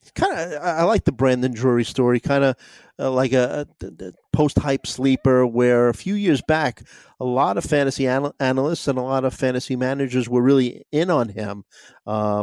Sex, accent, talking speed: male, American, 195 wpm